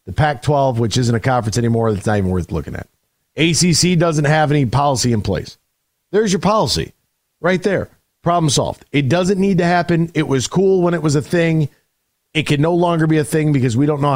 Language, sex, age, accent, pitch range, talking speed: English, male, 40-59, American, 115-150 Hz, 210 wpm